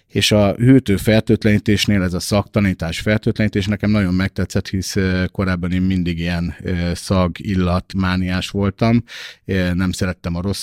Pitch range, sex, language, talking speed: 90-105 Hz, male, Hungarian, 130 wpm